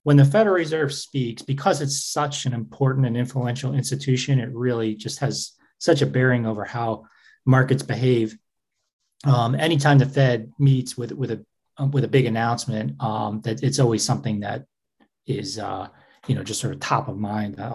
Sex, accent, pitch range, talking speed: male, American, 115-140 Hz, 175 wpm